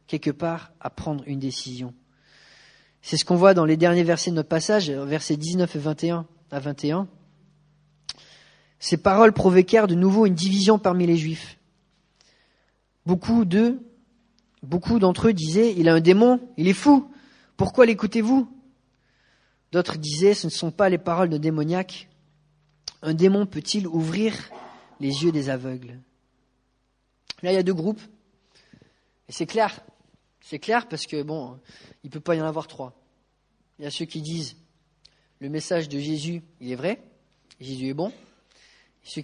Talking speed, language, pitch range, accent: 165 wpm, English, 145-185 Hz, French